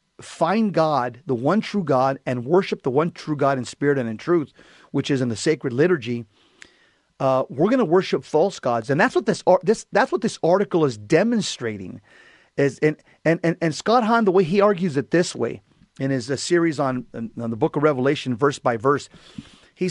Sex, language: male, English